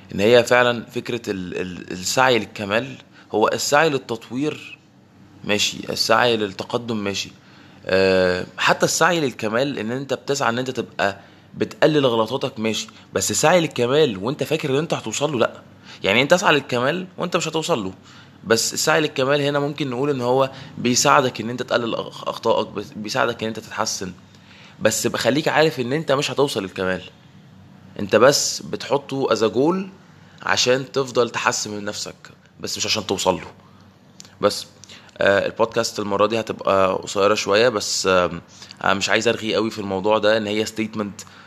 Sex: male